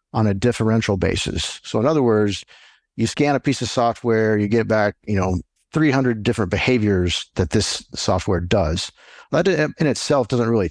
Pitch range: 95-125 Hz